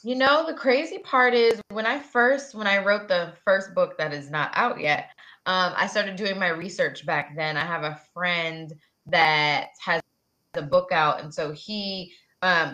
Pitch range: 160-230 Hz